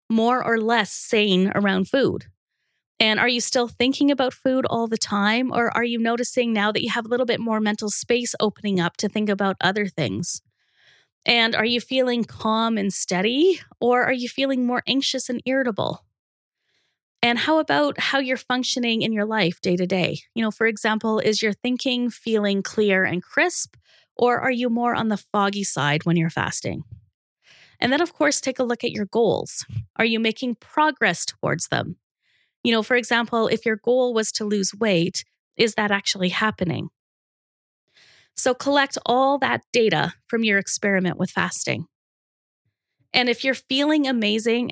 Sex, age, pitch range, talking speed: female, 20-39, 205-250 Hz, 175 wpm